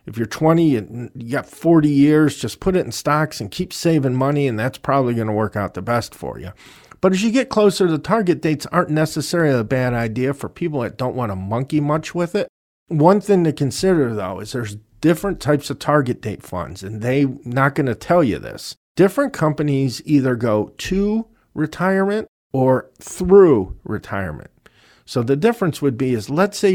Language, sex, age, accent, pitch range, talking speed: English, male, 40-59, American, 115-155 Hz, 195 wpm